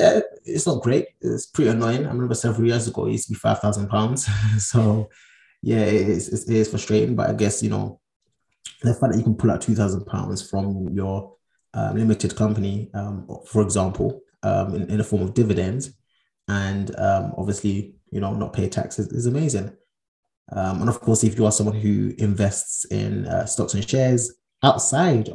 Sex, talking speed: male, 180 wpm